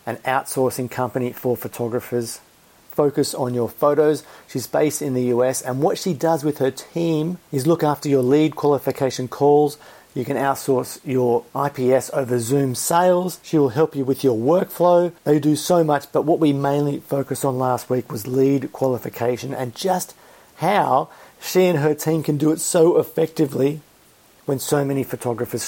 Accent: Australian